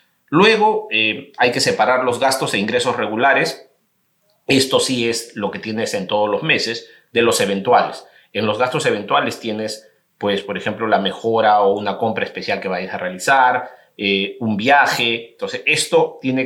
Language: Spanish